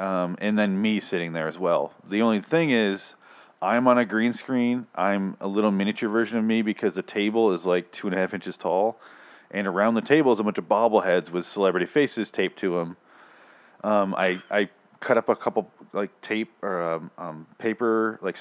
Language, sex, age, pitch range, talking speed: English, male, 30-49, 95-120 Hz, 210 wpm